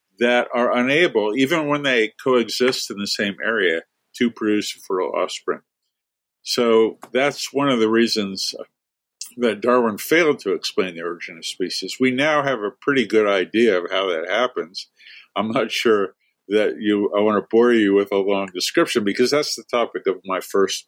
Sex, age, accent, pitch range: male, 50-69, American, 105-140 Hz